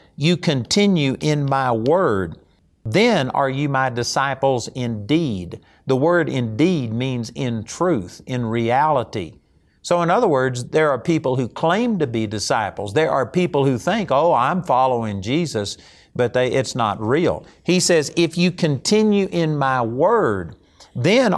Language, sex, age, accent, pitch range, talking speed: English, male, 50-69, American, 120-170 Hz, 150 wpm